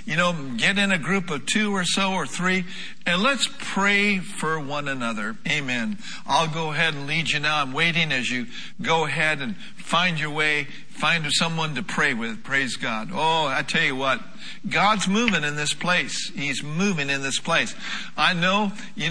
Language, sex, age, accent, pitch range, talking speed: English, male, 60-79, American, 155-200 Hz, 190 wpm